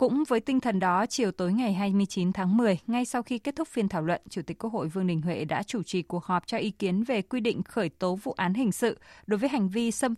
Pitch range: 180-230 Hz